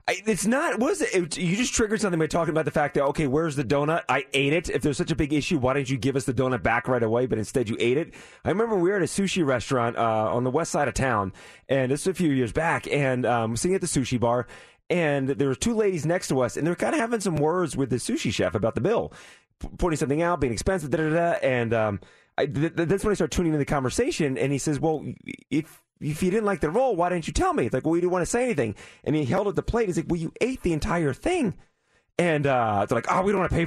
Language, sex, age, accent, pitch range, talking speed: English, male, 30-49, American, 135-180 Hz, 295 wpm